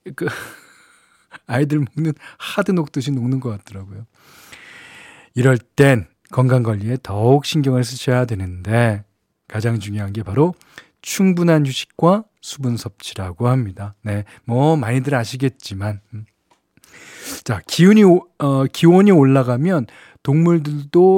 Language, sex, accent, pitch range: Korean, male, native, 115-150 Hz